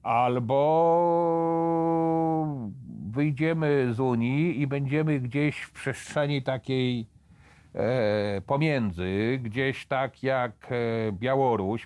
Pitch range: 120-165 Hz